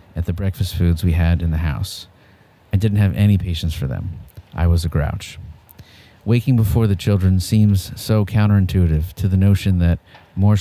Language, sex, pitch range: English, male, 85-100 Hz